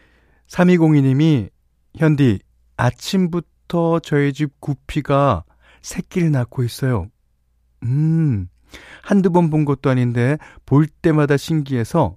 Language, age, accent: Korean, 40-59, native